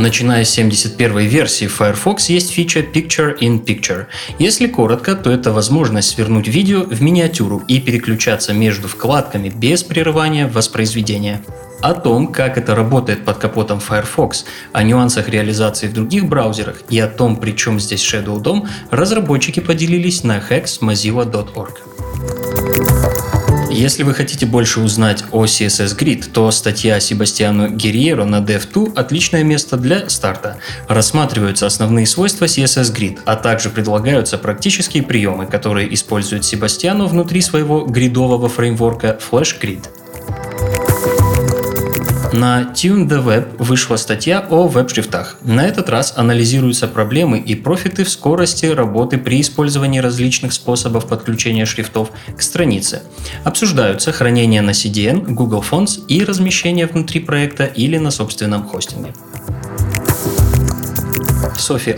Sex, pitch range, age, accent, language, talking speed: male, 105-145 Hz, 20-39, native, Russian, 125 wpm